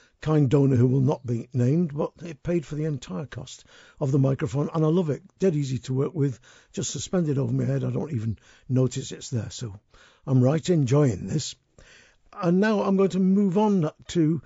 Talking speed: 210 wpm